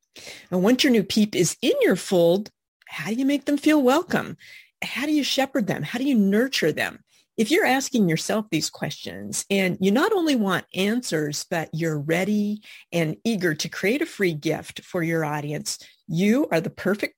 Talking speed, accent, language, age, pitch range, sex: 190 wpm, American, English, 40-59, 165-230 Hz, female